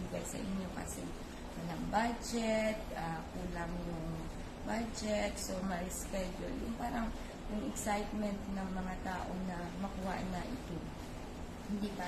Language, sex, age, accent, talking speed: Filipino, female, 20-39, native, 125 wpm